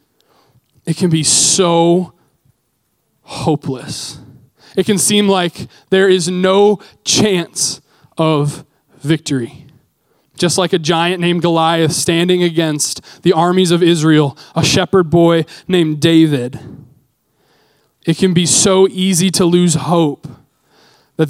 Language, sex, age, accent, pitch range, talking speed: English, male, 20-39, American, 145-180 Hz, 115 wpm